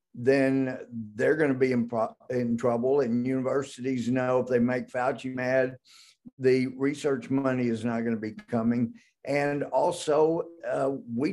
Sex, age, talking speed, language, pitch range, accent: male, 50-69, 160 wpm, English, 120-145 Hz, American